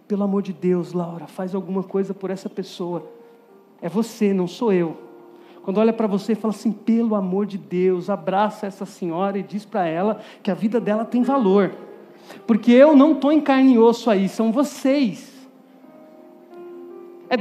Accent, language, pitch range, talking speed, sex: Brazilian, Portuguese, 195-270 Hz, 180 wpm, male